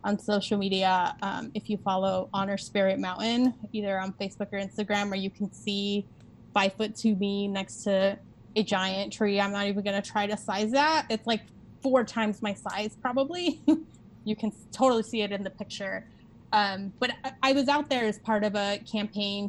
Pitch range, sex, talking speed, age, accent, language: 195-220 Hz, female, 195 wpm, 20-39, American, English